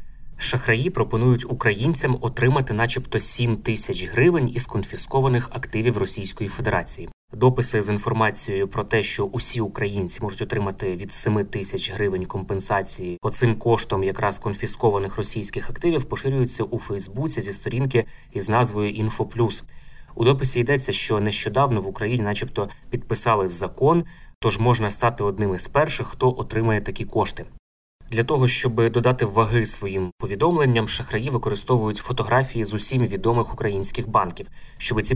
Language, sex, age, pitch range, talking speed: Ukrainian, male, 20-39, 105-125 Hz, 135 wpm